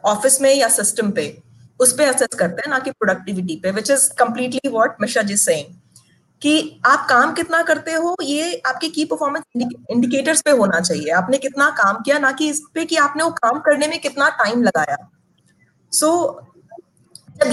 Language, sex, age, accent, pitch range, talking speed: Hindi, female, 20-39, native, 225-295 Hz, 185 wpm